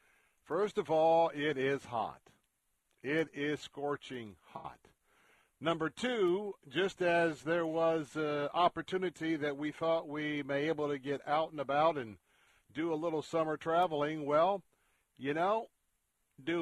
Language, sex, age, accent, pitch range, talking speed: English, male, 50-69, American, 135-165 Hz, 140 wpm